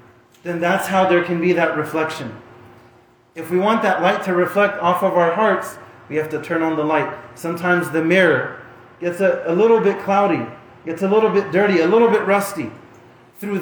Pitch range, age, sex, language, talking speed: 145-205 Hz, 30-49, male, English, 200 wpm